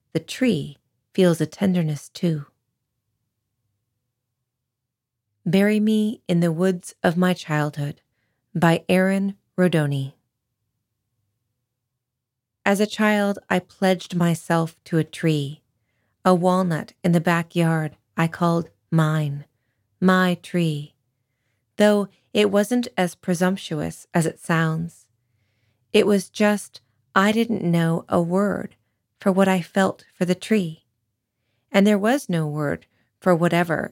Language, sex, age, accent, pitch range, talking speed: English, female, 30-49, American, 130-180 Hz, 115 wpm